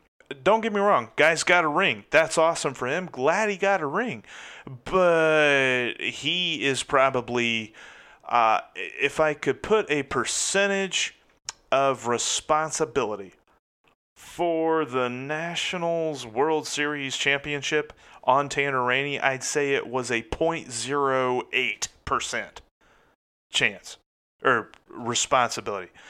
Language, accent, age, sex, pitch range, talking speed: English, American, 30-49, male, 125-160 Hz, 110 wpm